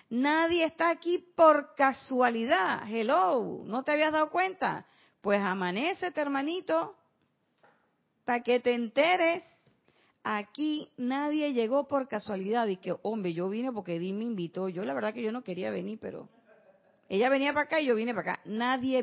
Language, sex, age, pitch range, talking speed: Spanish, female, 40-59, 215-310 Hz, 160 wpm